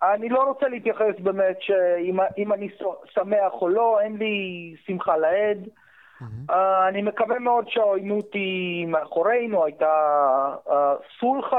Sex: male